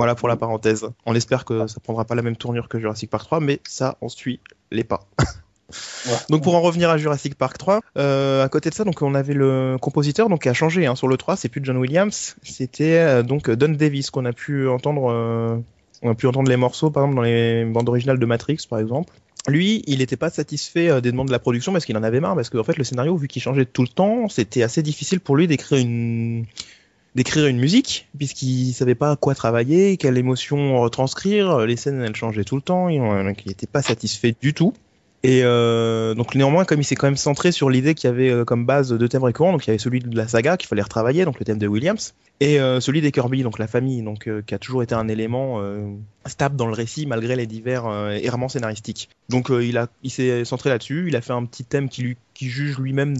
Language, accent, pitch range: French, French, 115-140 Hz